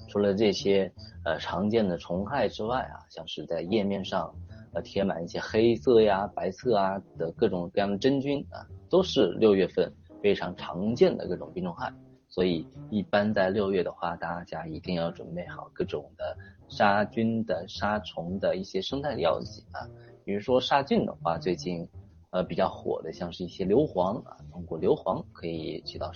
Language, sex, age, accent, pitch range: Chinese, male, 20-39, native, 85-105 Hz